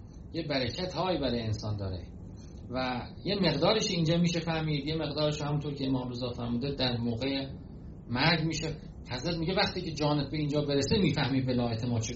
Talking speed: 170 wpm